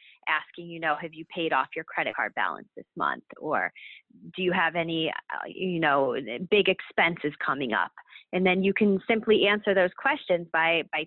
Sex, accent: female, American